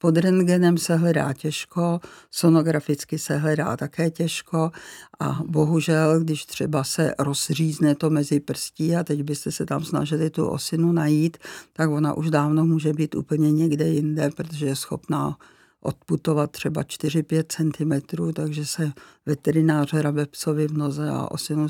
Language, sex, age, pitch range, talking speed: Czech, female, 50-69, 150-165 Hz, 145 wpm